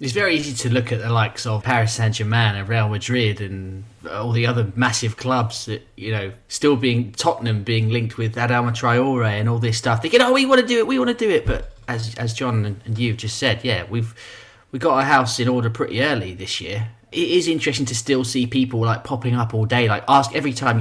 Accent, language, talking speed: British, English, 250 wpm